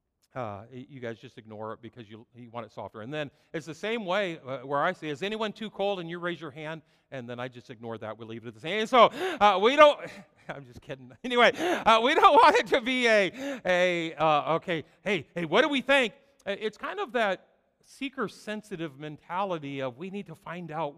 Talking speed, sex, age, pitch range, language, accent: 230 wpm, male, 50-69, 135-205 Hz, English, American